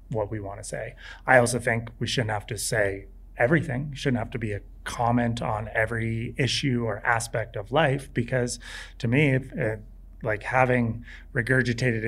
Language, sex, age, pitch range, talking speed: English, male, 30-49, 110-130 Hz, 165 wpm